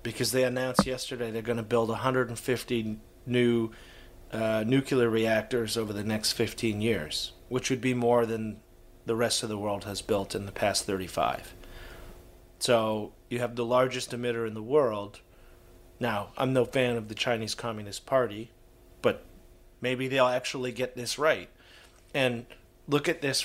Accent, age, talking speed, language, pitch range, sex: American, 30-49, 160 wpm, English, 105-125 Hz, male